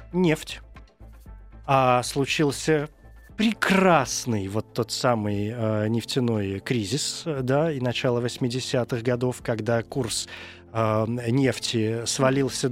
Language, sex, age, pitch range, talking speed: Russian, male, 20-39, 115-160 Hz, 85 wpm